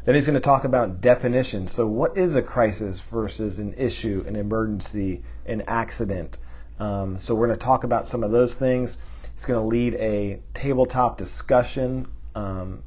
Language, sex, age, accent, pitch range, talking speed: English, male, 40-59, American, 100-125 Hz, 165 wpm